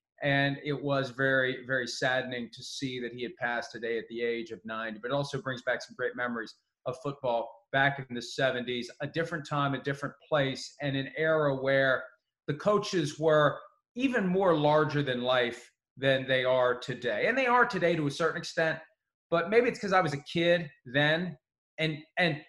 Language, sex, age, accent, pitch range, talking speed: English, male, 30-49, American, 125-155 Hz, 195 wpm